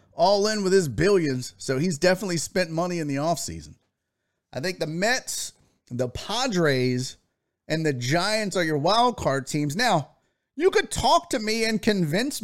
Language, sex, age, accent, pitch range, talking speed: English, male, 30-49, American, 125-180 Hz, 170 wpm